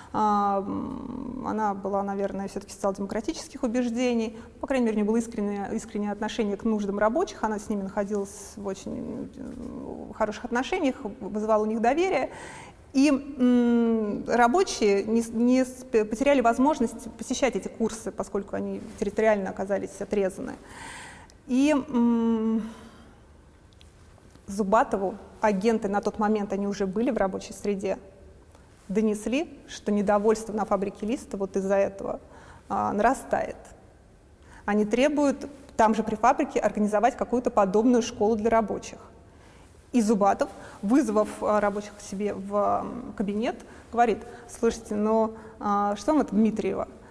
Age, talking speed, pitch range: 30-49, 120 wpm, 205-250 Hz